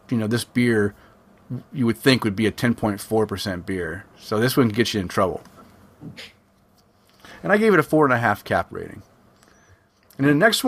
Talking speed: 185 wpm